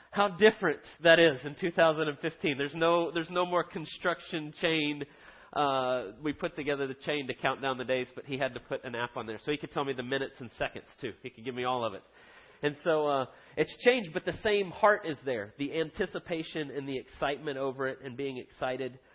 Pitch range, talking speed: 135-165 Hz, 225 wpm